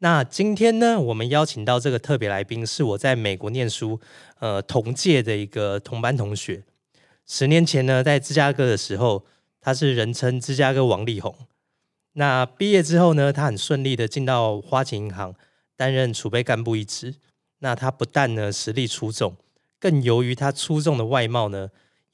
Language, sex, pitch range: Chinese, male, 110-140 Hz